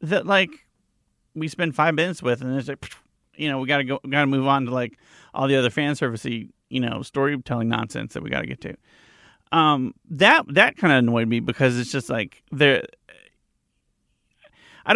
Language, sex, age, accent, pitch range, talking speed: English, male, 30-49, American, 120-155 Hz, 200 wpm